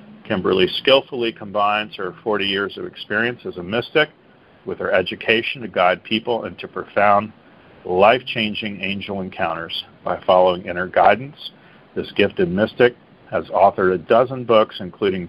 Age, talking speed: 40-59, 135 wpm